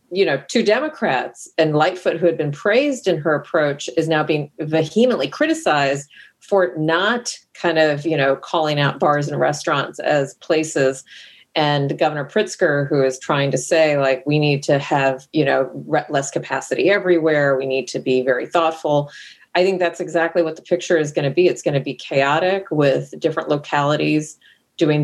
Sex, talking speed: female, 180 wpm